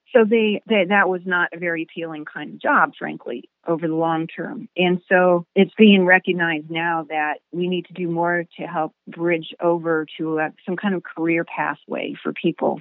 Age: 40-59